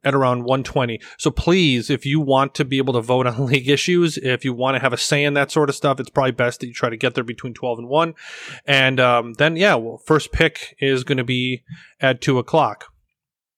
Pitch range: 125-150 Hz